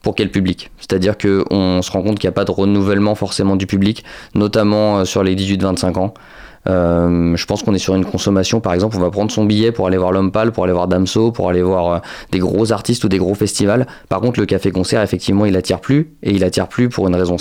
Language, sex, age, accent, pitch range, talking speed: French, male, 20-39, French, 95-110 Hz, 250 wpm